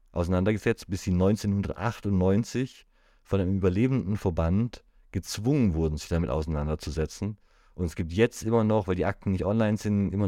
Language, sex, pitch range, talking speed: German, male, 85-105 Hz, 150 wpm